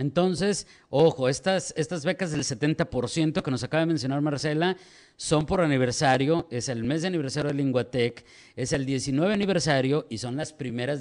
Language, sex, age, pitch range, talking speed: Spanish, male, 50-69, 130-175 Hz, 170 wpm